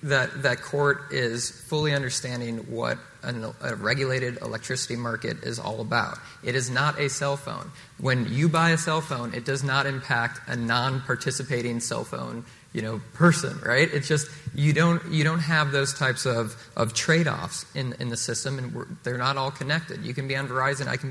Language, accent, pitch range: English, American, 120-145 Hz